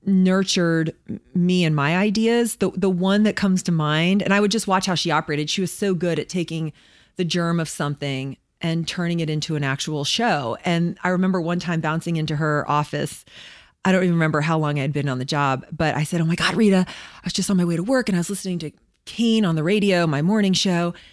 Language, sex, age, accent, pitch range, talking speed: English, female, 30-49, American, 170-215 Hz, 240 wpm